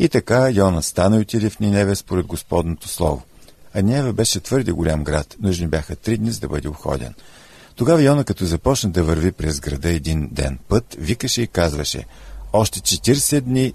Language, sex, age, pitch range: Bulgarian, male, 50-69, 85-110 Hz